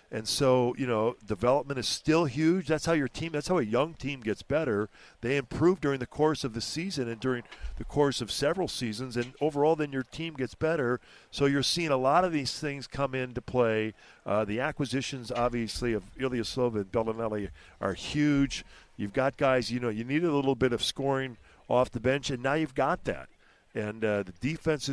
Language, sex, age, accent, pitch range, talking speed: English, male, 50-69, American, 110-140 Hz, 210 wpm